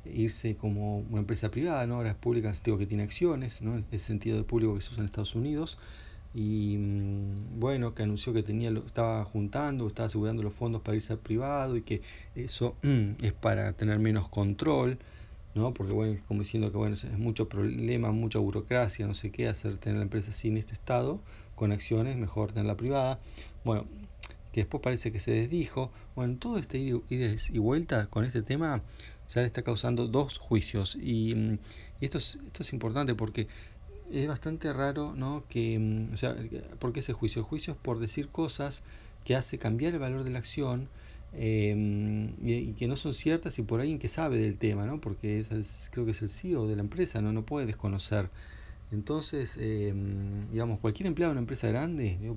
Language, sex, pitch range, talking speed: Spanish, male, 105-125 Hz, 200 wpm